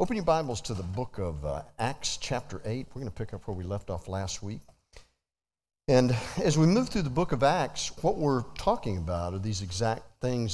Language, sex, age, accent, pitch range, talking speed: English, male, 50-69, American, 105-135 Hz, 220 wpm